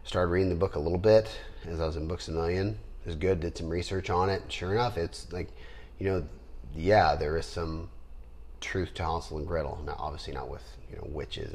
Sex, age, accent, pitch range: male, 30-49, American, 70-90 Hz